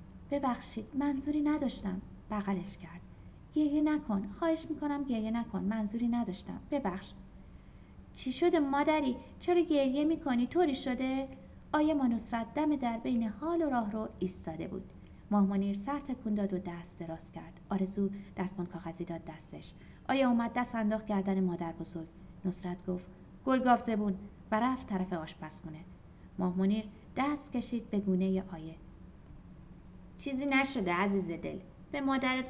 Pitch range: 185-260 Hz